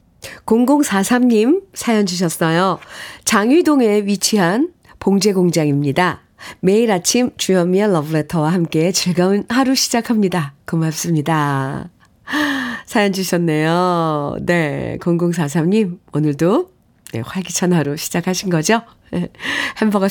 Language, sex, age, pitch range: Korean, female, 40-59, 170-235 Hz